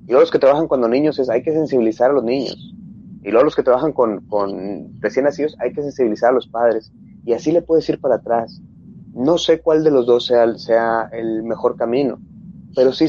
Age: 30-49